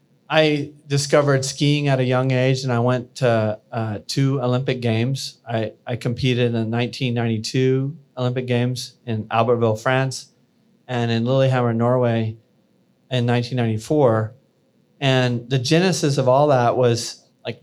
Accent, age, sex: American, 40-59, male